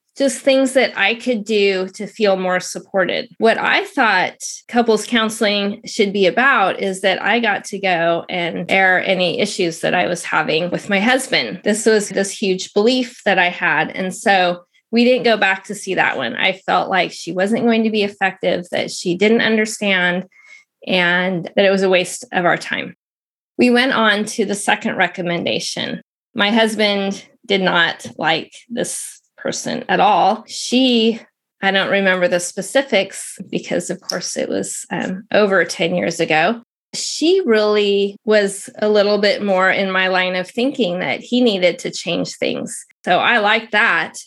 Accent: American